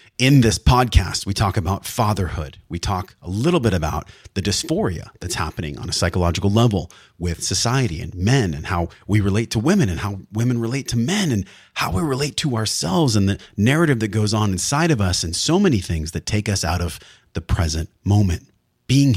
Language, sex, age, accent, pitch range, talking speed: English, male, 30-49, American, 90-115 Hz, 205 wpm